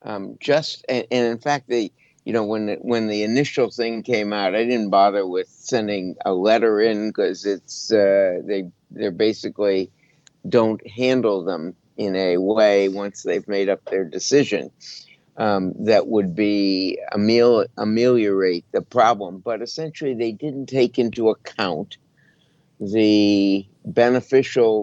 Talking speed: 145 wpm